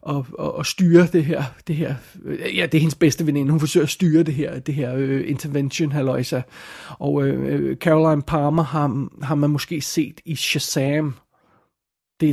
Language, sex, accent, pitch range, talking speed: Danish, male, native, 150-175 Hz, 165 wpm